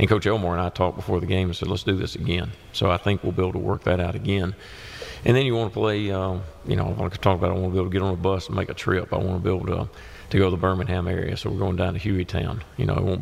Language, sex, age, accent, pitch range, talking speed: English, male, 40-59, American, 90-100 Hz, 340 wpm